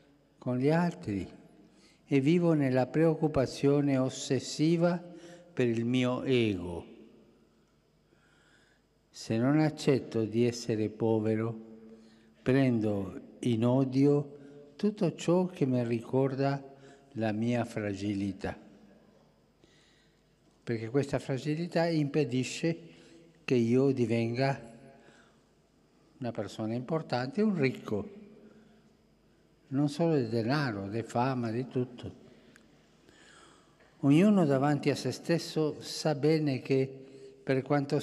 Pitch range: 115-150 Hz